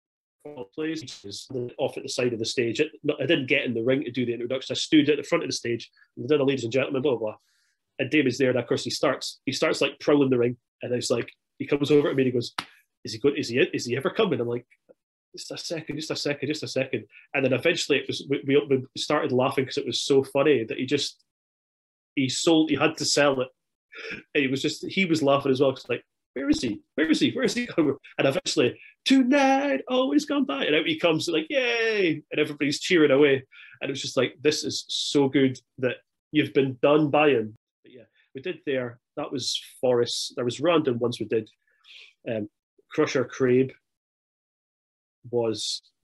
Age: 30-49